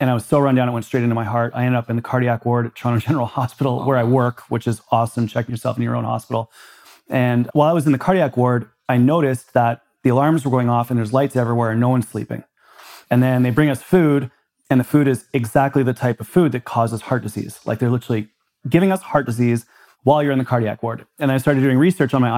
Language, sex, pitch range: English, male, 115-130 Hz